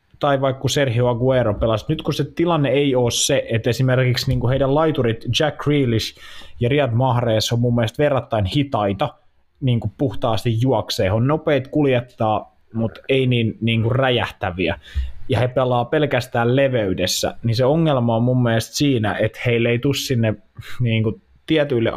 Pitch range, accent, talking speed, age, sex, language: 110-135 Hz, native, 160 wpm, 20-39, male, Finnish